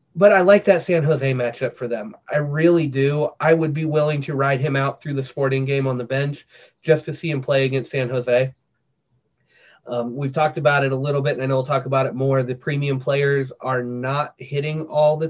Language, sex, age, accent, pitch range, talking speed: English, male, 30-49, American, 130-155 Hz, 230 wpm